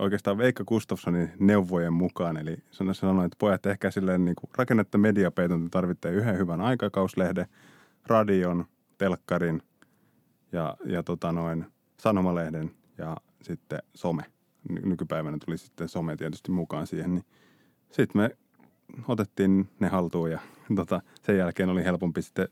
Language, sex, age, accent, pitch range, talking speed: Finnish, male, 30-49, native, 85-100 Hz, 135 wpm